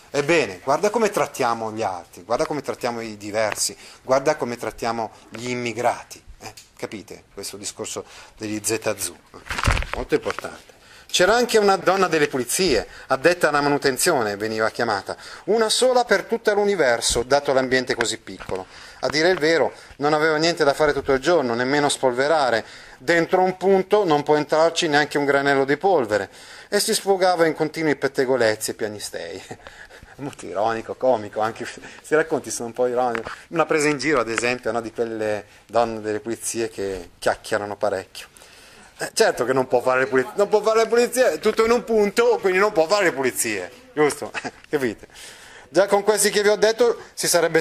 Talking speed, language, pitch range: 175 wpm, Italian, 125-205 Hz